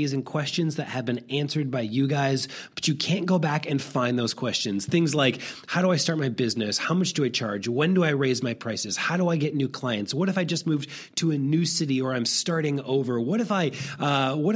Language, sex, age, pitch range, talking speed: English, male, 30-49, 135-170 Hz, 250 wpm